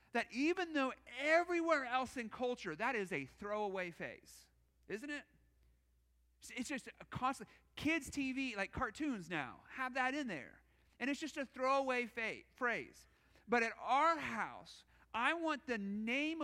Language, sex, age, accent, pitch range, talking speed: English, male, 40-59, American, 185-260 Hz, 150 wpm